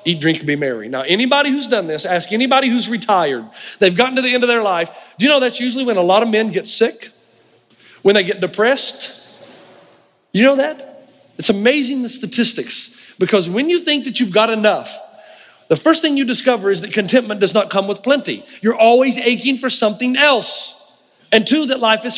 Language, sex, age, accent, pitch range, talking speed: English, male, 40-59, American, 225-295 Hz, 210 wpm